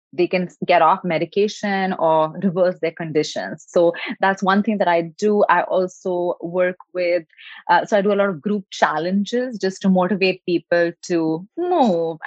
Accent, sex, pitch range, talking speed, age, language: Indian, female, 165-195 Hz, 170 wpm, 20-39, English